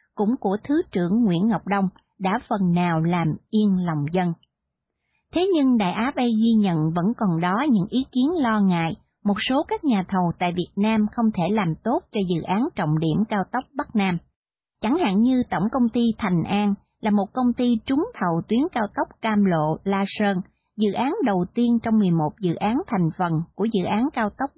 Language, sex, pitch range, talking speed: English, female, 180-240 Hz, 210 wpm